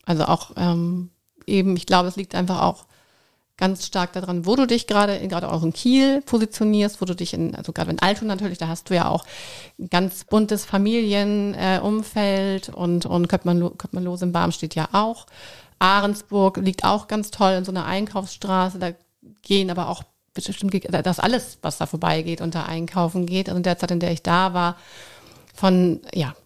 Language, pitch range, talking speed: German, 175-205 Hz, 190 wpm